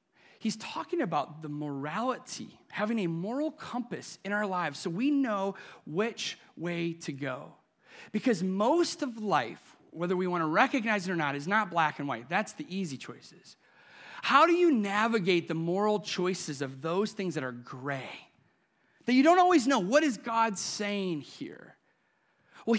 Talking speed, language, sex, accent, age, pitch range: 170 wpm, English, male, American, 30-49, 180-255 Hz